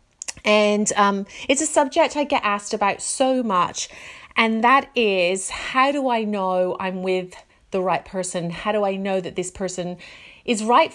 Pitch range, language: 190-245 Hz, English